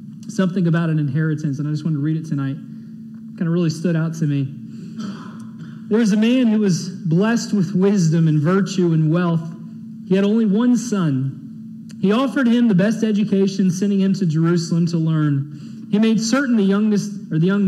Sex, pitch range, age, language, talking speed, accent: male, 165-215 Hz, 40-59, English, 195 wpm, American